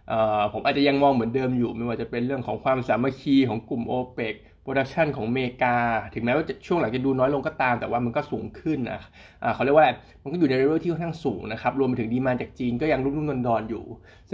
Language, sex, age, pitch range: Thai, male, 20-39, 115-145 Hz